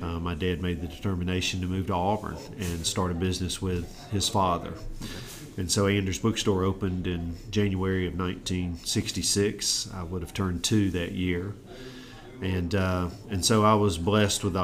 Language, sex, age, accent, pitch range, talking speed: English, male, 40-59, American, 90-105 Hz, 170 wpm